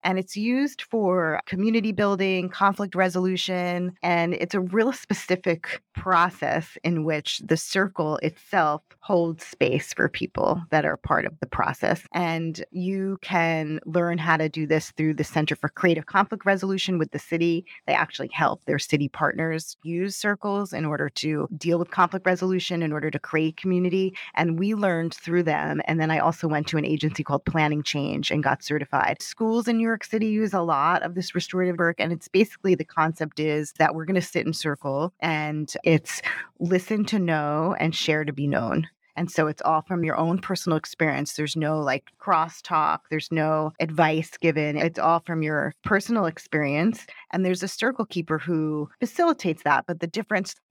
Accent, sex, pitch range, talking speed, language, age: American, female, 155-185 Hz, 180 wpm, English, 30-49